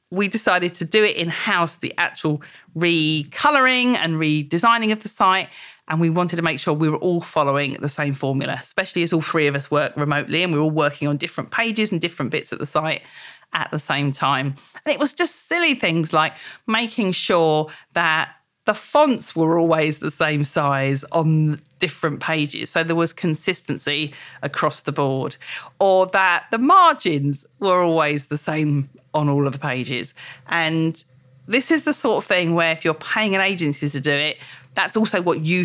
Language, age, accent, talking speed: English, 40-59, British, 190 wpm